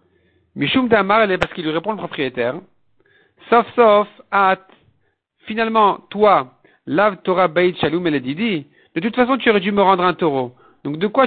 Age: 50-69